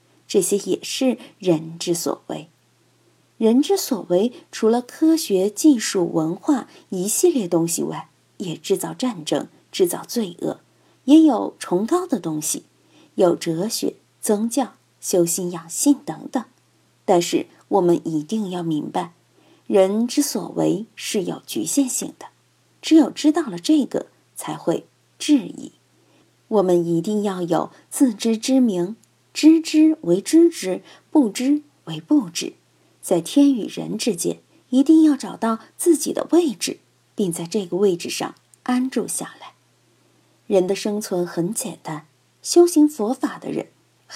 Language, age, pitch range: Chinese, 50-69, 185-295 Hz